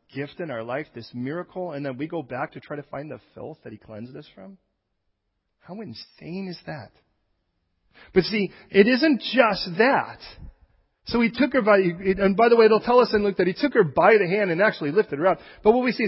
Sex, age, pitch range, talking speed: male, 40-59, 135-210 Hz, 235 wpm